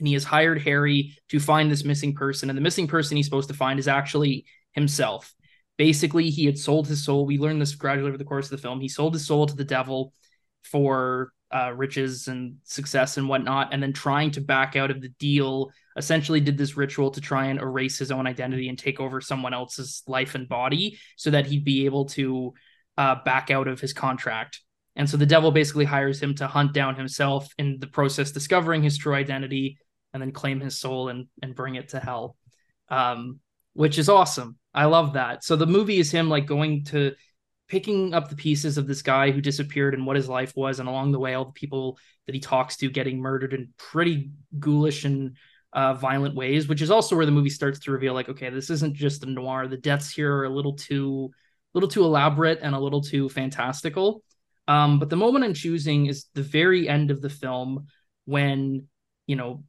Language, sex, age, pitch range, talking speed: English, male, 20-39, 135-150 Hz, 220 wpm